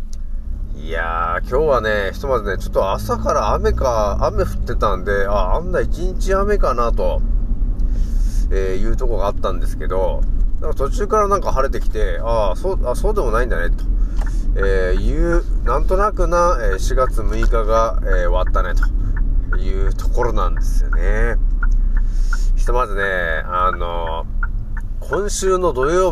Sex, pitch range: male, 95-135 Hz